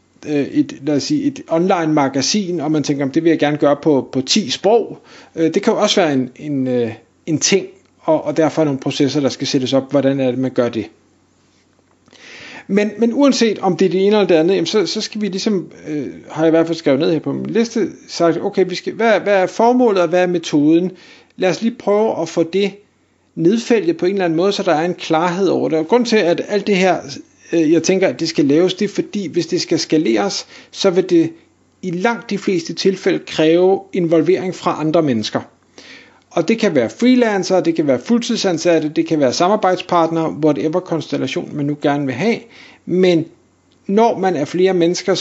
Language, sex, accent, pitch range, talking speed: Danish, male, native, 150-195 Hz, 215 wpm